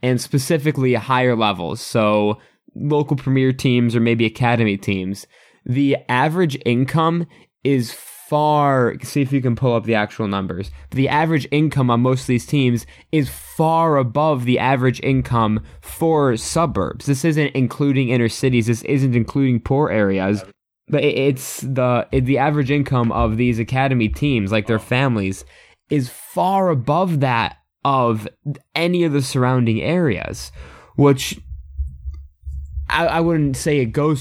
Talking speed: 145 wpm